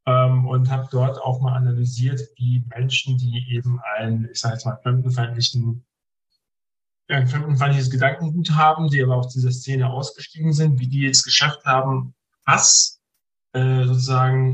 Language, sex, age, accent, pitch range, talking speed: German, male, 50-69, German, 120-135 Hz, 155 wpm